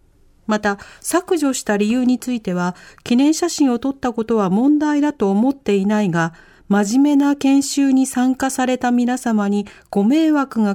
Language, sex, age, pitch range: Japanese, female, 40-59, 180-260 Hz